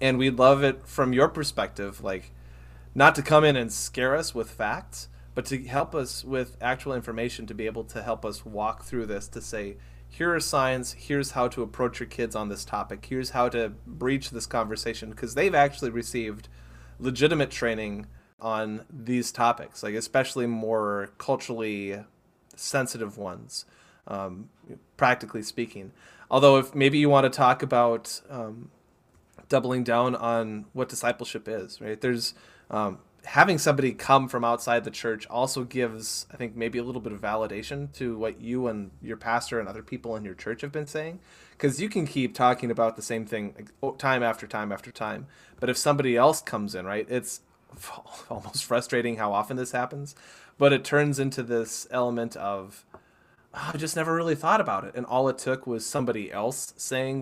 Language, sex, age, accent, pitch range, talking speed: English, male, 20-39, American, 110-135 Hz, 180 wpm